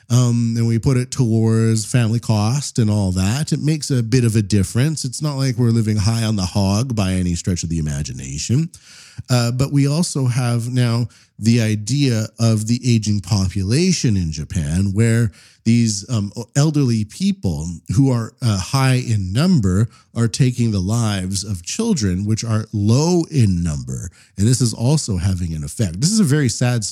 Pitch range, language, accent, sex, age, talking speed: 95-125 Hz, English, American, male, 40-59, 180 wpm